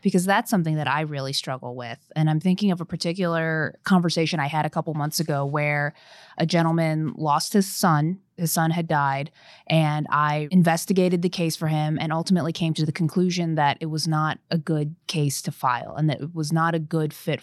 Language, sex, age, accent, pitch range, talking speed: English, female, 20-39, American, 150-185 Hz, 210 wpm